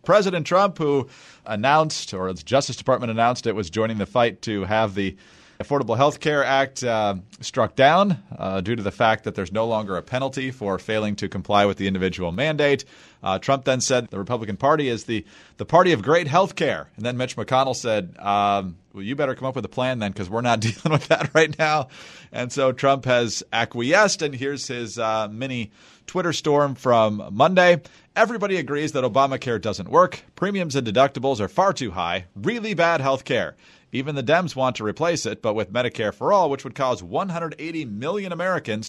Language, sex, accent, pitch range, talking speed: English, male, American, 110-155 Hz, 200 wpm